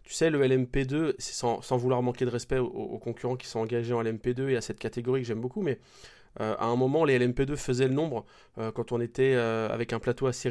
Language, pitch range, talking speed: French, 120-140 Hz, 255 wpm